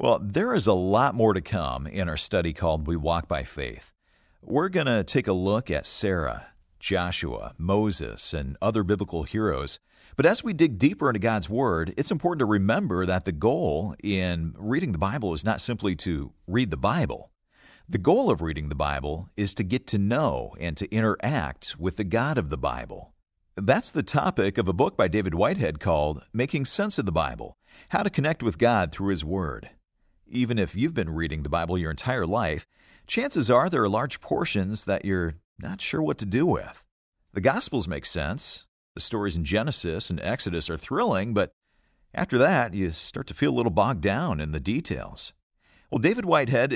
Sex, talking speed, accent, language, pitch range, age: male, 195 wpm, American, English, 80-110 Hz, 50-69